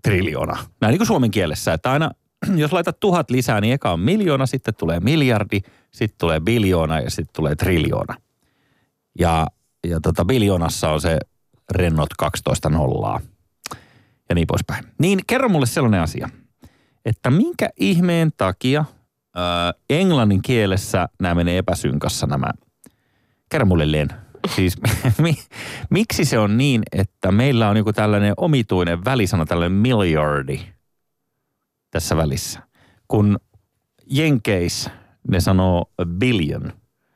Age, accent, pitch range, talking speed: 30-49, native, 90-125 Hz, 130 wpm